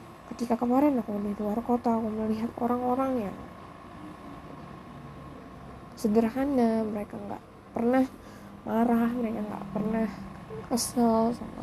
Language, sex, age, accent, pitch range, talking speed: Indonesian, female, 10-29, native, 210-240 Hz, 110 wpm